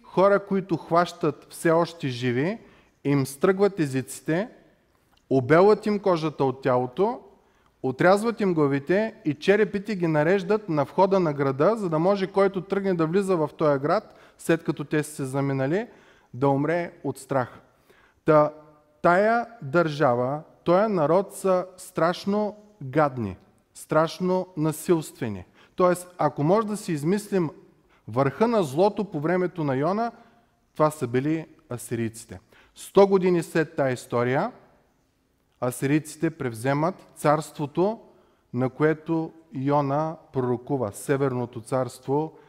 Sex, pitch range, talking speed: male, 140-190 Hz, 120 wpm